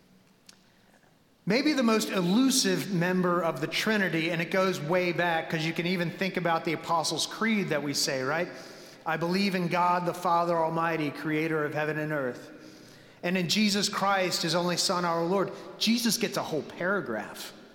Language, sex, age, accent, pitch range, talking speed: English, male, 30-49, American, 160-215 Hz, 175 wpm